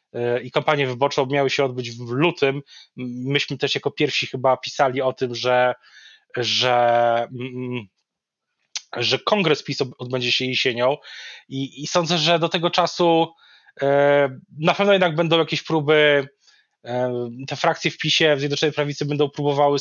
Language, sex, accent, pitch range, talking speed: Polish, male, native, 130-155 Hz, 140 wpm